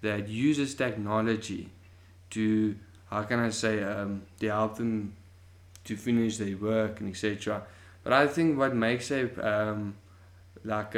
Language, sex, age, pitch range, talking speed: English, male, 20-39, 100-120 Hz, 140 wpm